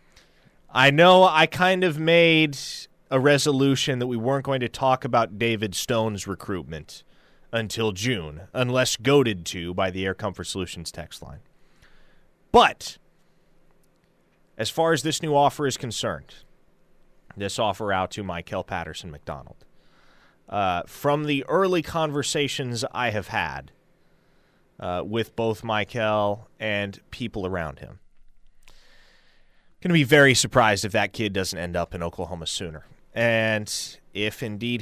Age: 30-49